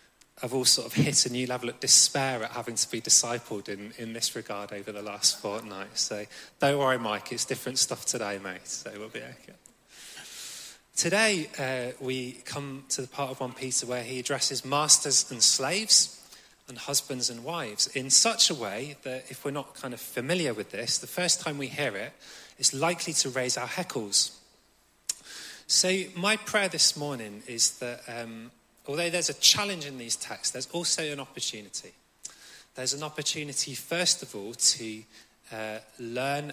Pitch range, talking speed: 115-145 Hz, 180 wpm